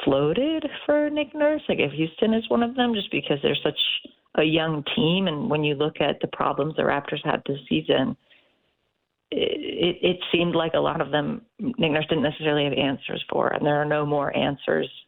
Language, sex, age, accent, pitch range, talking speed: English, female, 30-49, American, 140-165 Hz, 205 wpm